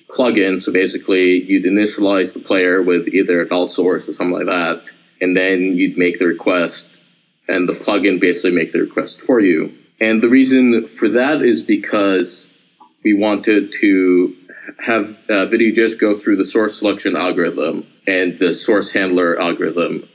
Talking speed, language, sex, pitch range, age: 165 wpm, English, male, 90-115 Hz, 30-49